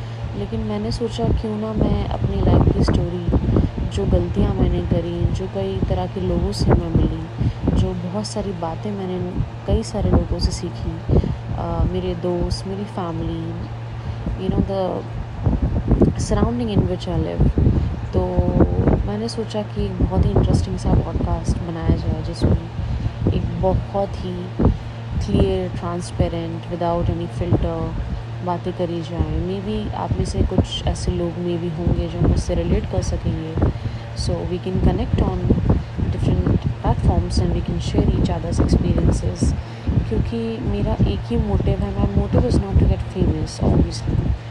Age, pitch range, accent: 20-39, 95-115 Hz, native